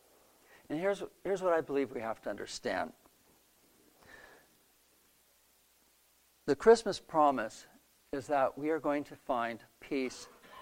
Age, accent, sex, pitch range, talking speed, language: 60-79, American, male, 135-170 Hz, 120 wpm, English